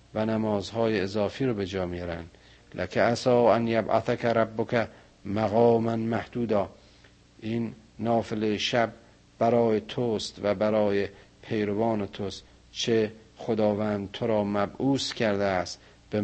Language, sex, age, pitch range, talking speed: Persian, male, 50-69, 105-120 Hz, 120 wpm